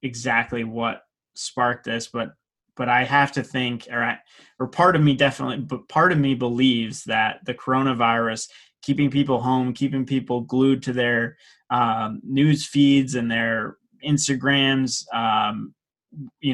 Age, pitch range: 20-39, 120-135 Hz